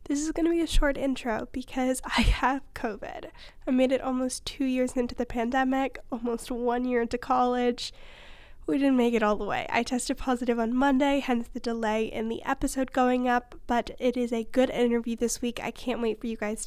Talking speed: 215 wpm